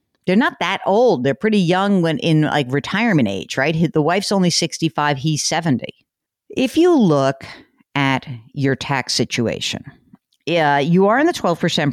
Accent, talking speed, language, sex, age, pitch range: American, 165 wpm, English, female, 50-69, 140-195 Hz